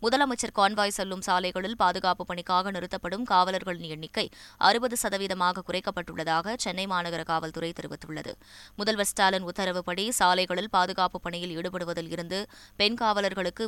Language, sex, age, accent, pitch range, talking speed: Tamil, female, 20-39, native, 175-205 Hz, 105 wpm